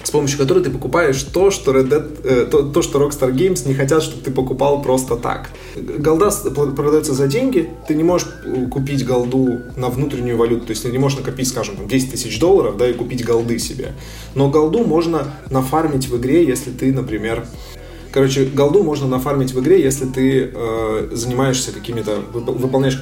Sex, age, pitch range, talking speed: male, 20-39, 125-150 Hz, 180 wpm